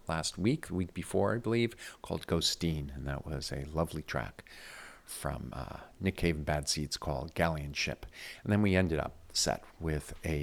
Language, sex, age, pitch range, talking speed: English, male, 50-69, 75-95 Hz, 190 wpm